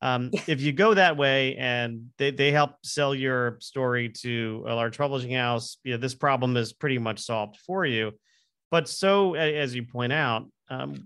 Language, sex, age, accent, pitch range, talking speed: English, male, 40-59, American, 120-150 Hz, 190 wpm